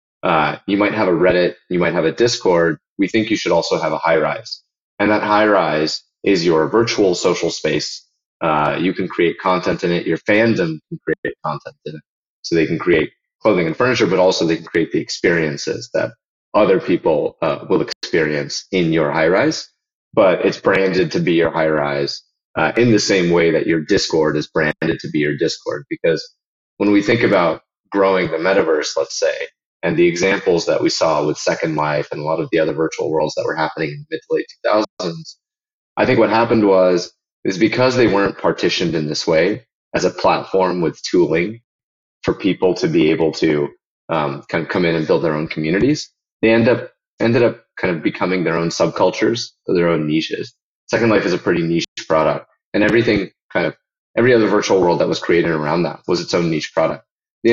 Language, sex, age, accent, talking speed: English, male, 30-49, American, 205 wpm